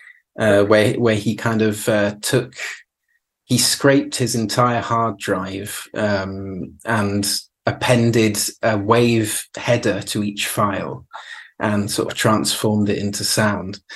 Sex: male